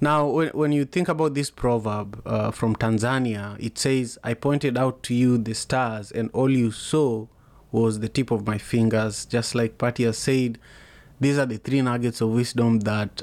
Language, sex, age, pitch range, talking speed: English, male, 30-49, 115-130 Hz, 185 wpm